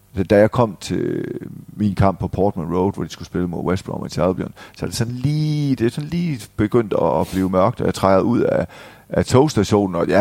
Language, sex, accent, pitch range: Danish, male, native, 95-115 Hz